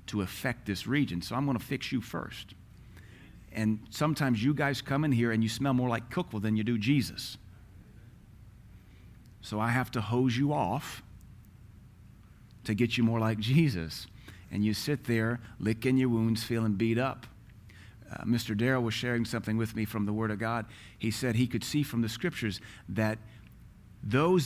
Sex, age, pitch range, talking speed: male, 40-59, 100-125 Hz, 180 wpm